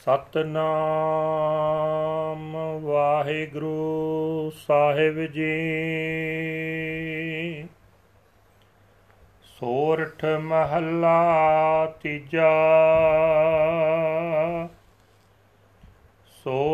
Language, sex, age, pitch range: Punjabi, male, 40-59, 150-165 Hz